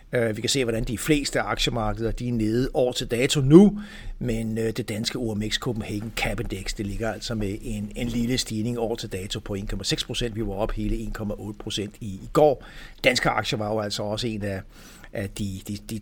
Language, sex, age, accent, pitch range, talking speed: Danish, male, 60-79, native, 105-130 Hz, 195 wpm